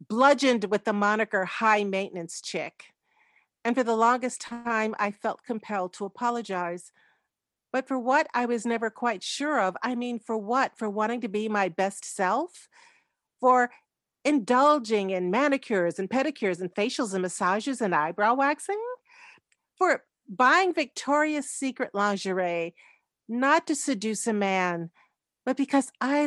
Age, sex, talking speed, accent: 50-69, female, 145 wpm, American